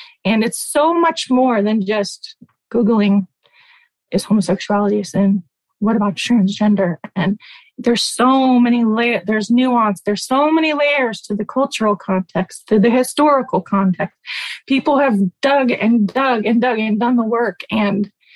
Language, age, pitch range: English, 20-39, 200-255 Hz